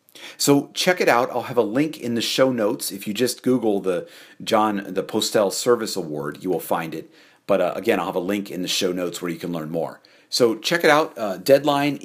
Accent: American